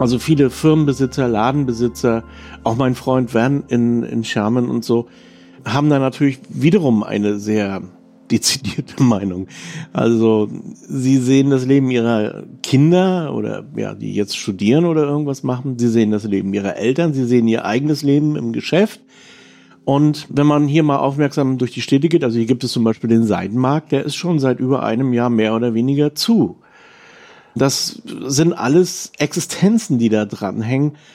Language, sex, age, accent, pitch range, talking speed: German, male, 50-69, German, 120-155 Hz, 165 wpm